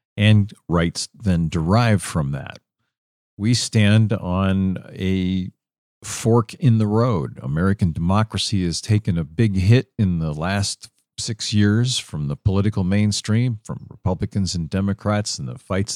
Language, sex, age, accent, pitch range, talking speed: English, male, 50-69, American, 90-110 Hz, 140 wpm